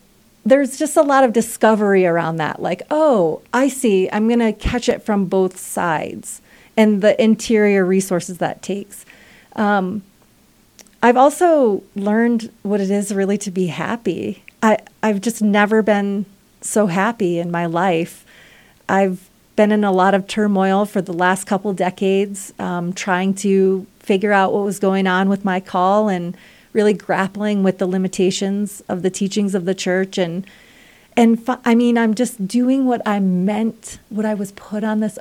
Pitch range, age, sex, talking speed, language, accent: 190-225 Hz, 30-49, female, 170 wpm, English, American